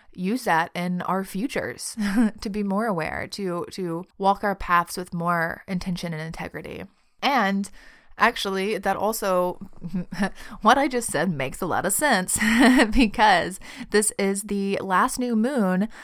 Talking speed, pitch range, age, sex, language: 145 wpm, 170-210 Hz, 30-49, female, English